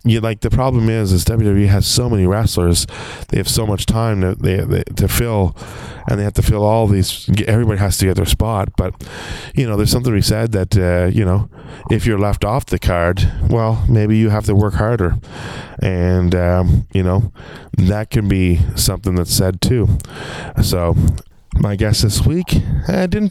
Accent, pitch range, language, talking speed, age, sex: American, 95-115 Hz, English, 195 wpm, 20-39, male